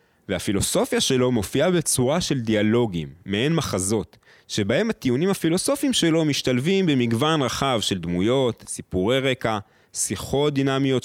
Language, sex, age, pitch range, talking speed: Hebrew, male, 30-49, 95-135 Hz, 115 wpm